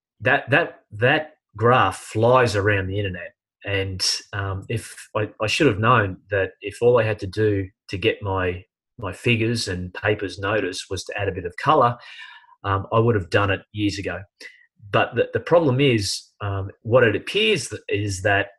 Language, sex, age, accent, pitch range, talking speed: English, male, 30-49, Australian, 95-115 Hz, 185 wpm